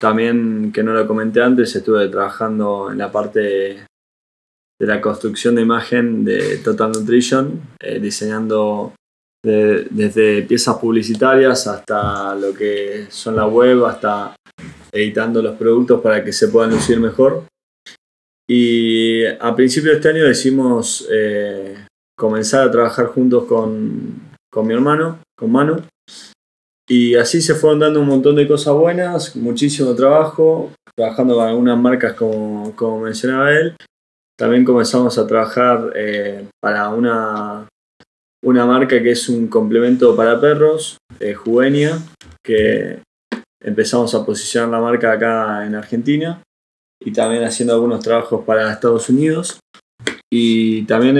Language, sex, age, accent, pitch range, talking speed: Spanish, male, 20-39, Argentinian, 110-125 Hz, 135 wpm